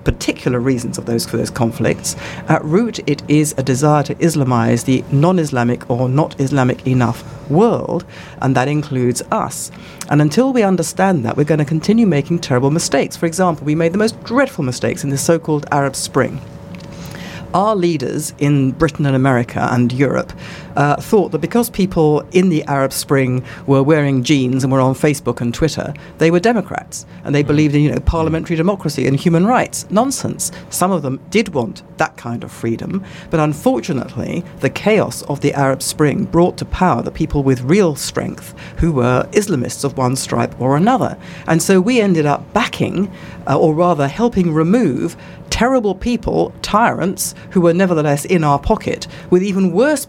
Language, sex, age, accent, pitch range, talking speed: English, female, 50-69, British, 135-180 Hz, 175 wpm